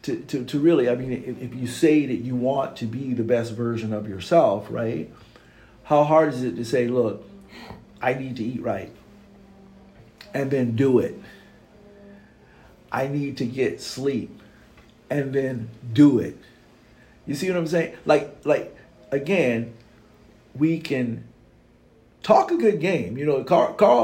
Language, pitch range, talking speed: English, 120-160 Hz, 160 wpm